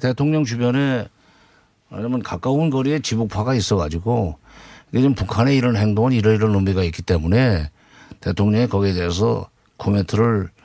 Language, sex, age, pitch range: Korean, male, 50-69, 100-125 Hz